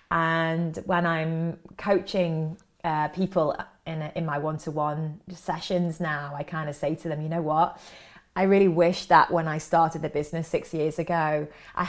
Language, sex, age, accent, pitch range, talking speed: English, female, 20-39, British, 155-185 Hz, 175 wpm